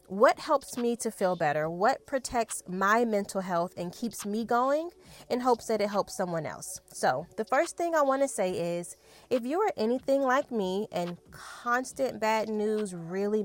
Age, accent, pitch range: 20-39, American, 190-250 Hz